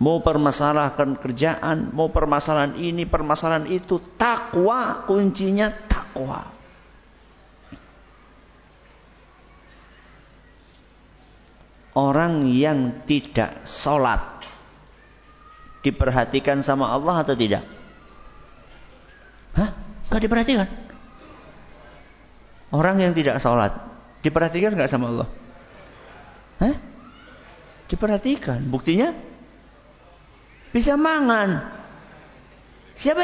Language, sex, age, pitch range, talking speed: Malay, male, 50-69, 155-250 Hz, 65 wpm